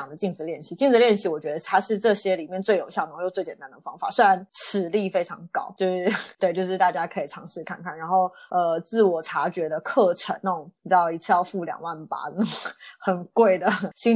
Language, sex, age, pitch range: Chinese, female, 20-39, 180-220 Hz